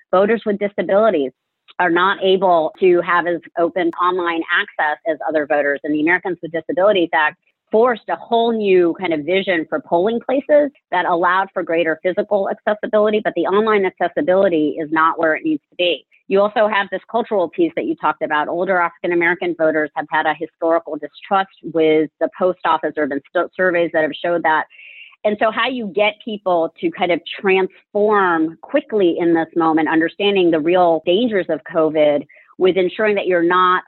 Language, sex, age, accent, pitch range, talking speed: English, female, 40-59, American, 160-200 Hz, 180 wpm